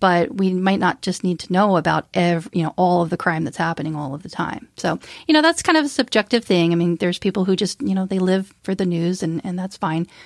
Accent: American